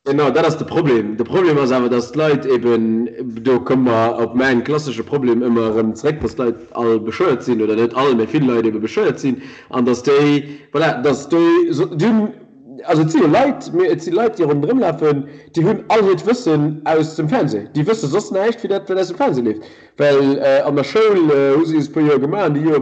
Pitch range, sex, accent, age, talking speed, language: 120-160 Hz, male, German, 30-49, 220 wpm, English